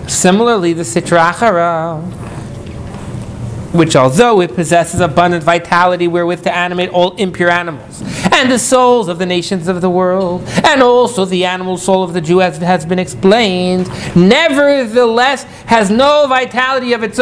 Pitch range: 155-225 Hz